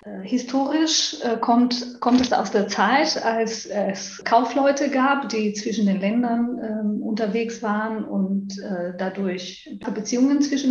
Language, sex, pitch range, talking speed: German, female, 195-255 Hz, 120 wpm